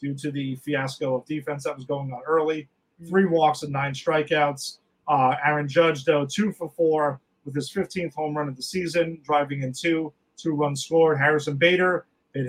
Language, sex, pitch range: English, male, 145-180 Hz